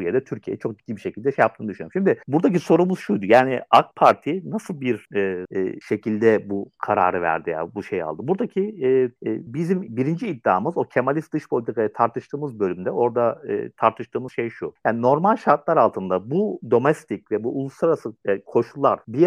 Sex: male